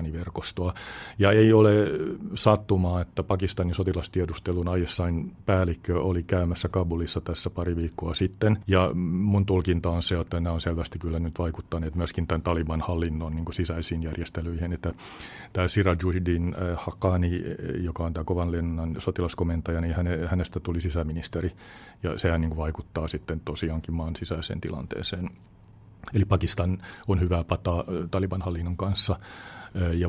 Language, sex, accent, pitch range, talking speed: Finnish, male, native, 85-95 Hz, 140 wpm